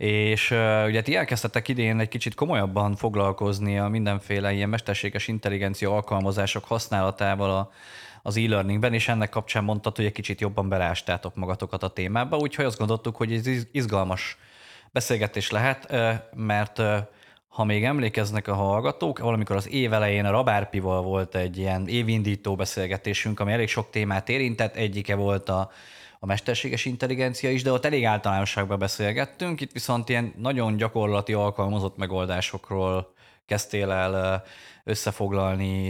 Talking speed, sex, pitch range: 135 wpm, male, 100-115 Hz